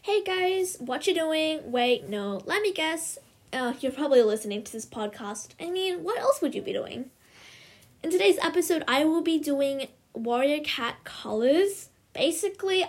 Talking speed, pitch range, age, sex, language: 170 wpm, 220-300 Hz, 10-29, female, English